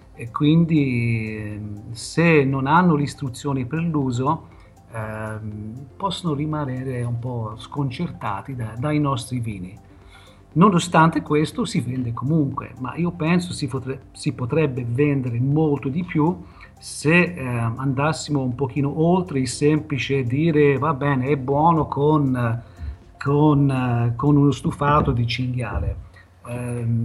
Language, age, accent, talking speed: Italian, 50-69, native, 115 wpm